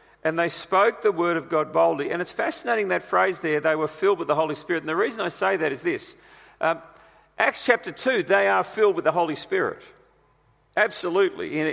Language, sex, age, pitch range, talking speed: English, male, 40-59, 160-235 Hz, 215 wpm